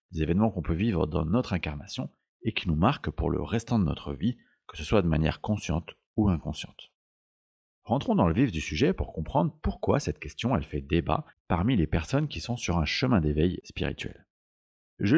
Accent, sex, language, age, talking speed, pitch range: French, male, French, 40-59, 200 wpm, 80-110 Hz